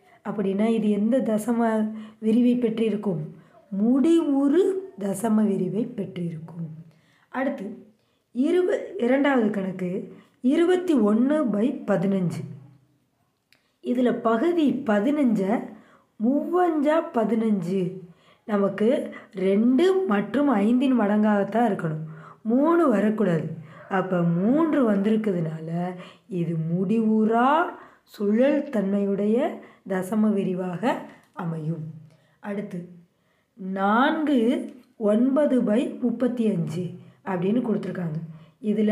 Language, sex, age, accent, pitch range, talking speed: Tamil, female, 20-39, native, 195-250 Hz, 70 wpm